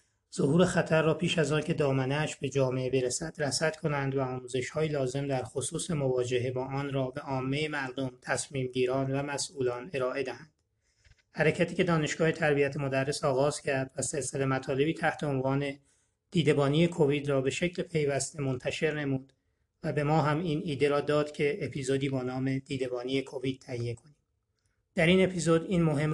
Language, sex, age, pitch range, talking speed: Persian, male, 30-49, 135-160 Hz, 170 wpm